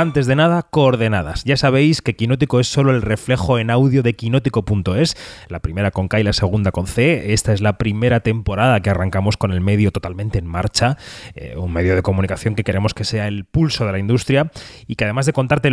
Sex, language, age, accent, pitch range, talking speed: male, Spanish, 30-49, Spanish, 105-130 Hz, 220 wpm